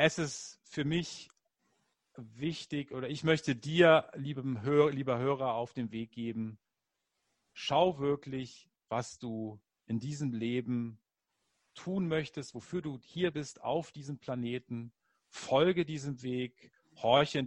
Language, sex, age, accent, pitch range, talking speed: German, male, 40-59, German, 120-150 Hz, 125 wpm